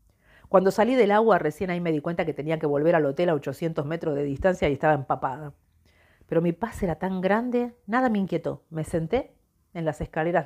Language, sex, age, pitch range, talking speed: Spanish, female, 50-69, 145-180 Hz, 210 wpm